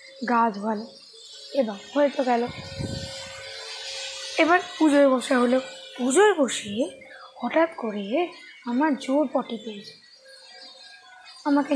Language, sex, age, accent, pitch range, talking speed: Bengali, female, 20-39, native, 245-300 Hz, 90 wpm